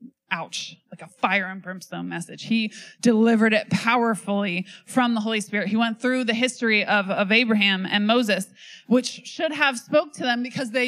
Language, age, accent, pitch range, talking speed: English, 20-39, American, 180-225 Hz, 180 wpm